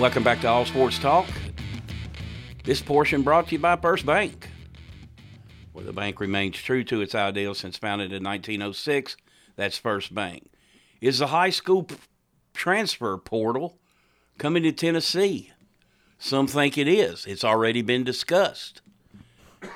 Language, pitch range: English, 100-125 Hz